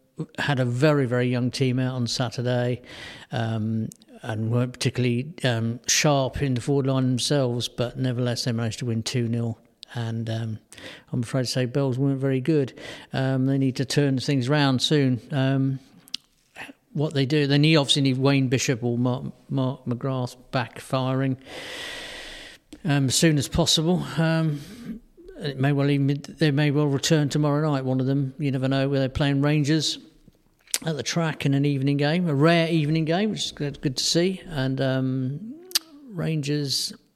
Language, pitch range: English, 125-145 Hz